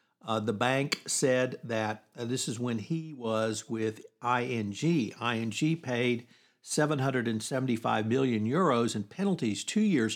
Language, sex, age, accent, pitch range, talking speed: English, male, 60-79, American, 110-130 Hz, 130 wpm